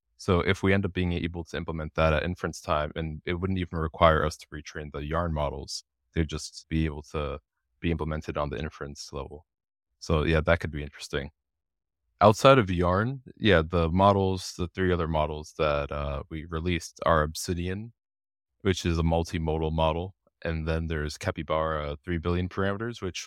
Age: 20-39